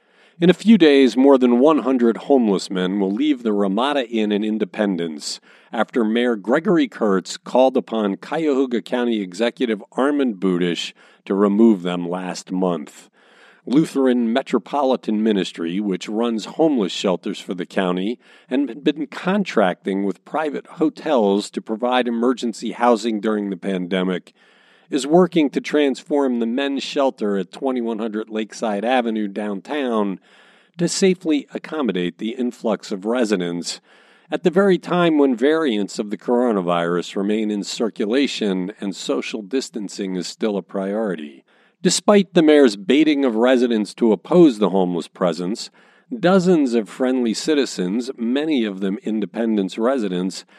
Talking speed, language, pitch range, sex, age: 135 wpm, English, 100-140 Hz, male, 50-69